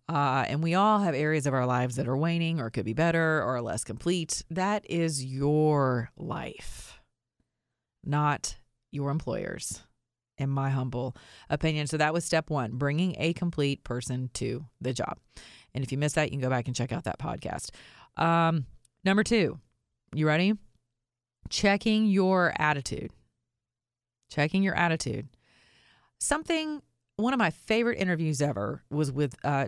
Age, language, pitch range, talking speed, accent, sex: 30-49, English, 130-165 Hz, 155 wpm, American, female